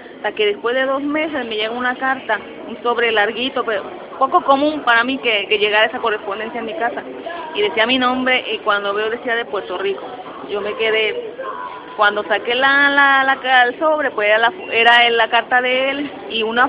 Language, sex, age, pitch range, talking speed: Spanish, female, 30-49, 215-265 Hz, 205 wpm